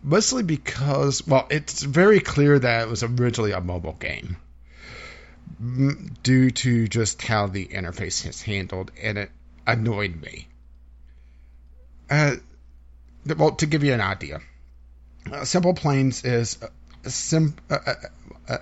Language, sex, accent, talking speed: English, male, American, 130 wpm